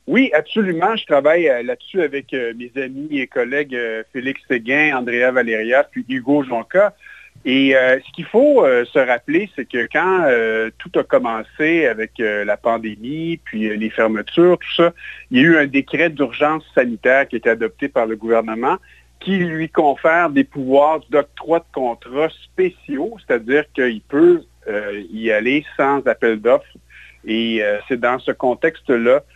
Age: 50-69